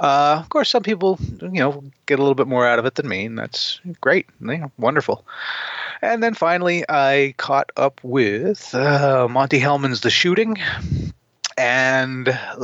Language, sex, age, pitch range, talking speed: English, male, 30-49, 115-140 Hz, 160 wpm